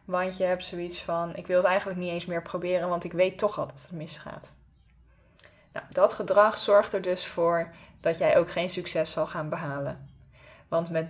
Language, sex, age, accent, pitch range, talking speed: Dutch, female, 20-39, Dutch, 165-195 Hz, 205 wpm